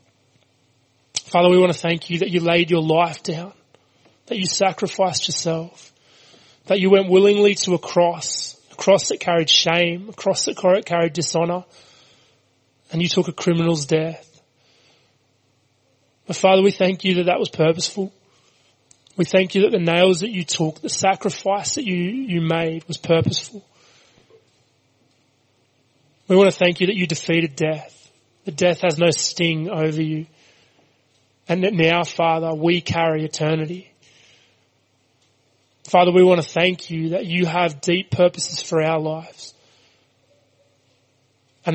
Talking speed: 150 wpm